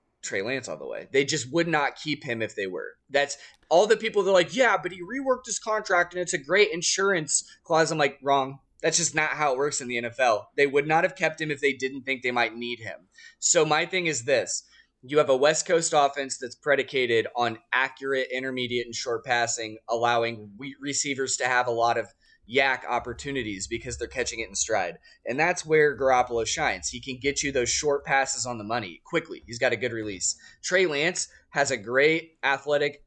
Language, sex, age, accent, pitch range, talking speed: English, male, 20-39, American, 125-165 Hz, 215 wpm